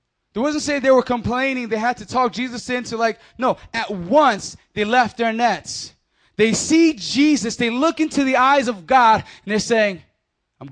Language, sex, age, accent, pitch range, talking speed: English, male, 20-39, American, 220-270 Hz, 190 wpm